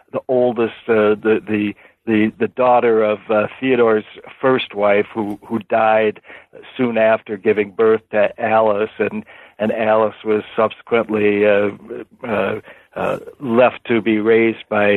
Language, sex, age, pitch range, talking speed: English, male, 60-79, 105-115 Hz, 145 wpm